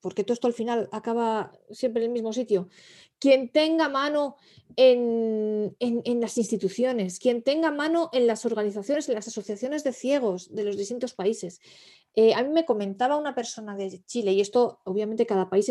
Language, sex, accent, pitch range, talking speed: Spanish, female, Spanish, 195-265 Hz, 180 wpm